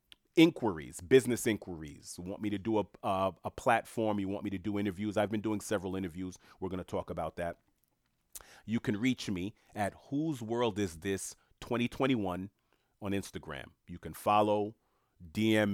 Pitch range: 90-115 Hz